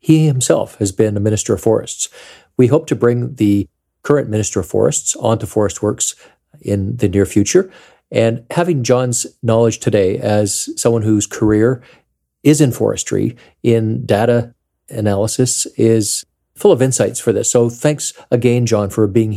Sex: male